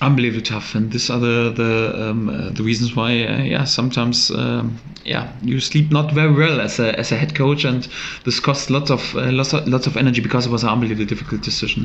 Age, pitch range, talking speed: 30-49, 120-135 Hz, 235 wpm